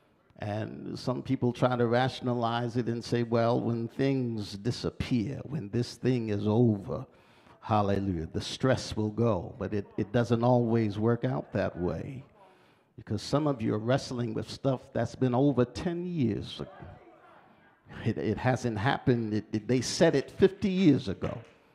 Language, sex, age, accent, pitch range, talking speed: English, male, 50-69, American, 110-135 Hz, 160 wpm